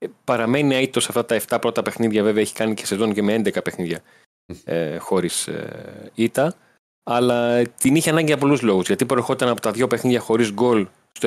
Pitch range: 100-115 Hz